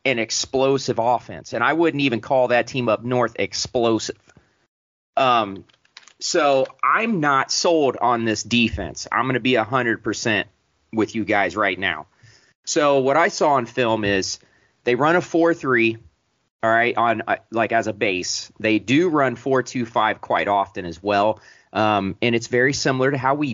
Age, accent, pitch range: 30-49, American, 110-130 Hz